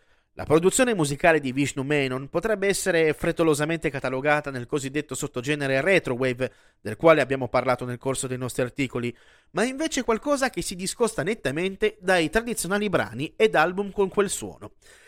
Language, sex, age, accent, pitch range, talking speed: Italian, male, 30-49, native, 135-205 Hz, 155 wpm